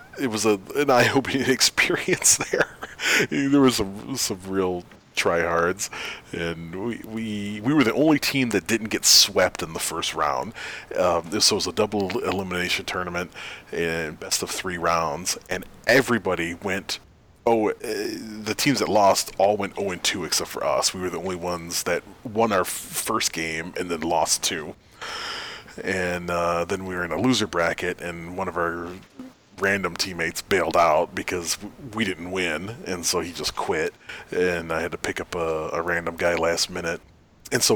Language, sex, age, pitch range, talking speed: English, male, 30-49, 85-110 Hz, 175 wpm